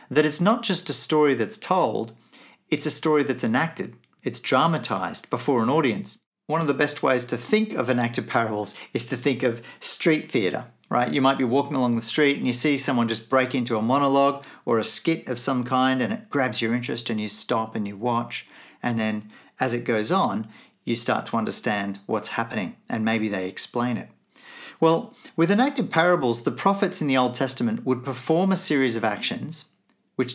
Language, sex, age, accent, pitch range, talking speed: English, male, 40-59, Australian, 115-155 Hz, 200 wpm